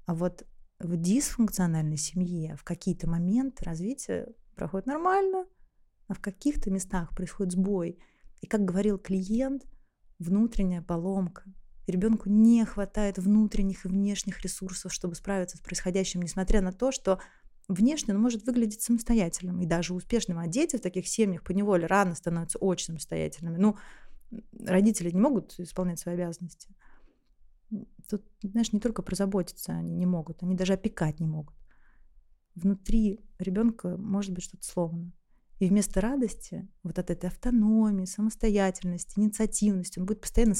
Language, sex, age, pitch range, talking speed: Russian, female, 20-39, 180-215 Hz, 140 wpm